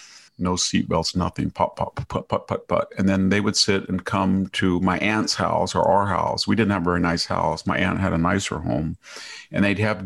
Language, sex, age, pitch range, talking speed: English, male, 50-69, 90-100 Hz, 235 wpm